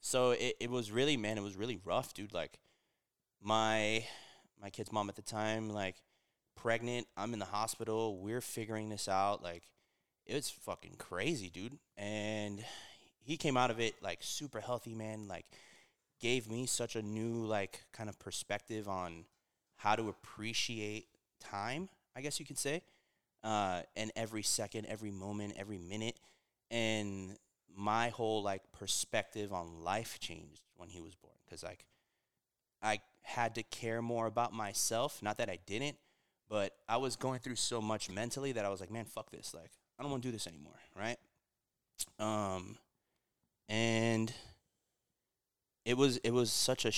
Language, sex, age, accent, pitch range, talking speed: English, male, 20-39, American, 100-115 Hz, 165 wpm